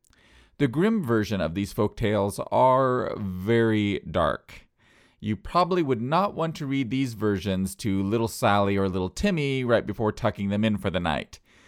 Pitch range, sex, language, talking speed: 100-140 Hz, male, English, 165 wpm